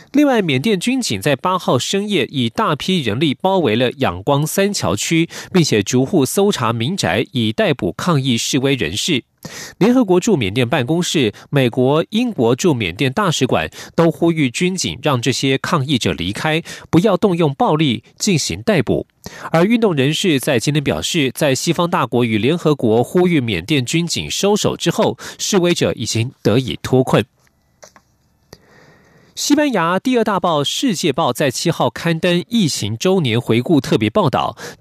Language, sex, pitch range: Chinese, male, 130-180 Hz